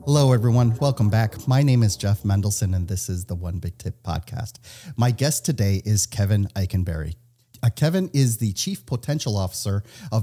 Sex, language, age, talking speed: male, English, 40-59, 175 wpm